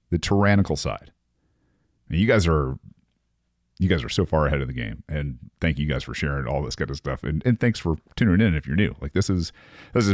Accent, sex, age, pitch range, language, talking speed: American, male, 40-59, 70-95 Hz, English, 245 wpm